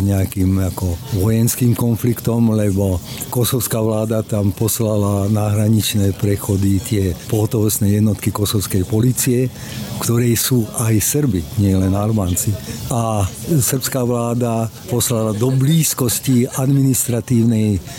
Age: 50-69